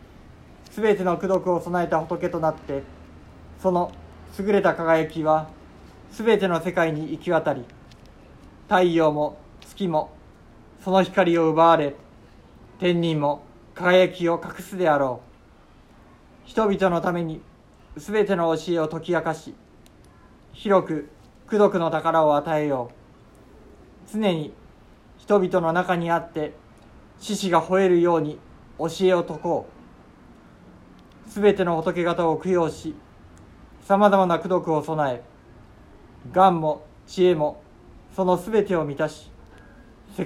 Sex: male